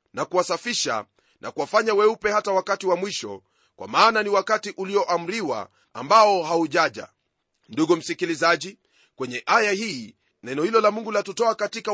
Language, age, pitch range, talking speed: Swahili, 30-49, 185-220 Hz, 140 wpm